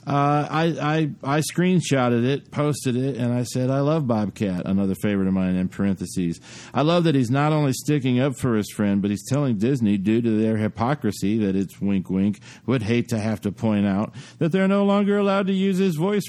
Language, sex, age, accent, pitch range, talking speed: English, male, 50-69, American, 110-150 Hz, 215 wpm